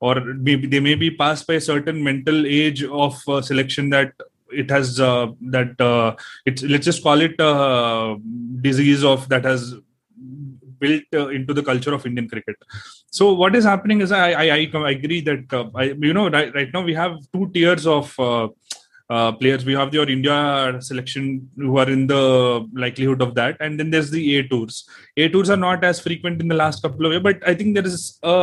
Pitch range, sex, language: 130-155 Hz, male, English